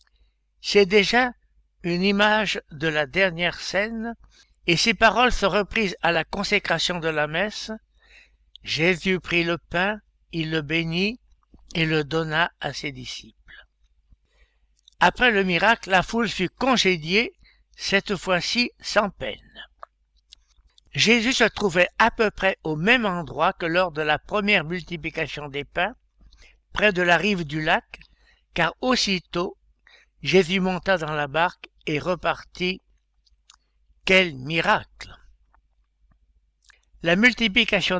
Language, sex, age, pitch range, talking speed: French, male, 60-79, 150-200 Hz, 125 wpm